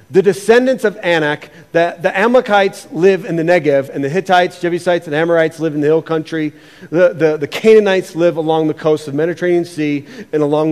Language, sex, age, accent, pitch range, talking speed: English, male, 40-59, American, 155-210 Hz, 195 wpm